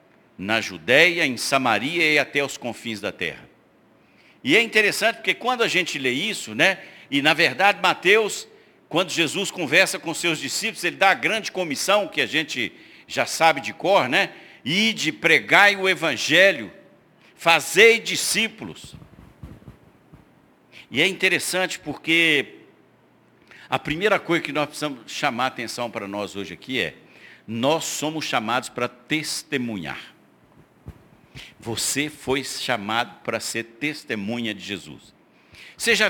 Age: 60-79